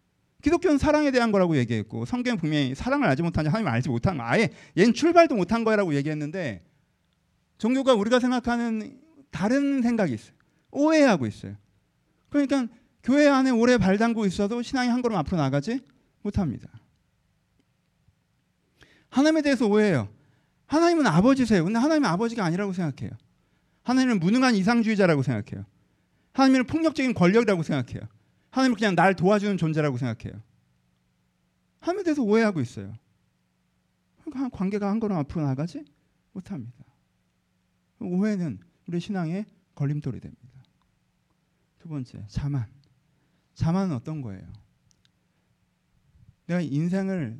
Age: 40-59